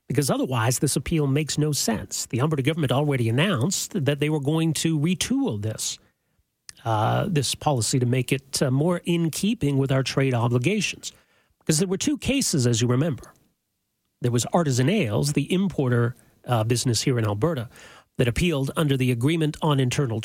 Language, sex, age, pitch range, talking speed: English, male, 40-59, 120-155 Hz, 175 wpm